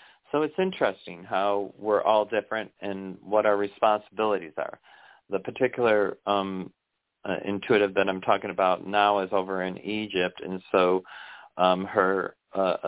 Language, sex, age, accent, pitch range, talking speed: English, male, 40-59, American, 95-105 Hz, 145 wpm